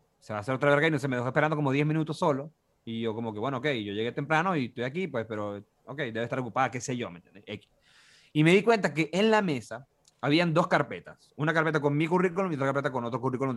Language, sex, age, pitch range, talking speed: Spanish, male, 20-39, 130-170 Hz, 275 wpm